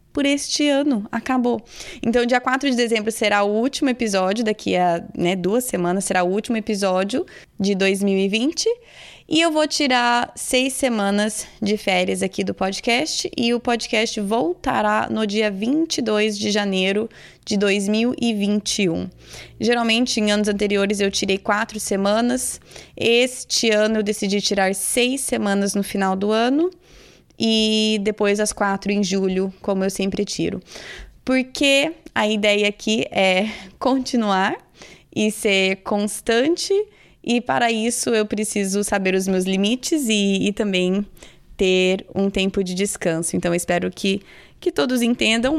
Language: Portuguese